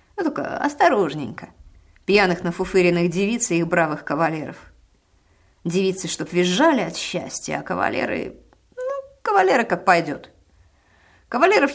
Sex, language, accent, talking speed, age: female, Russian, native, 110 wpm, 30-49